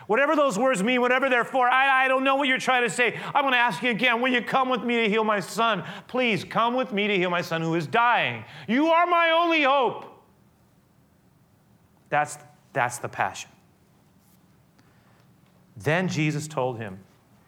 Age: 30-49